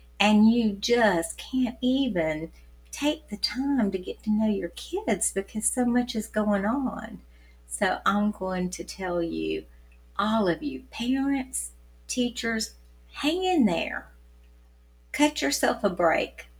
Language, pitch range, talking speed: English, 150-210 Hz, 135 wpm